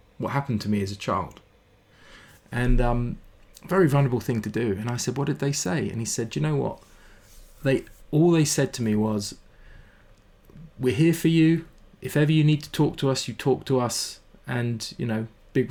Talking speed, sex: 210 wpm, male